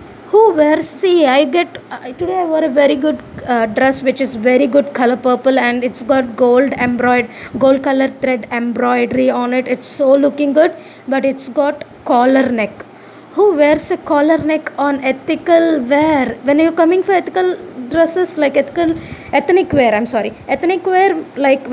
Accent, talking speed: Indian, 175 wpm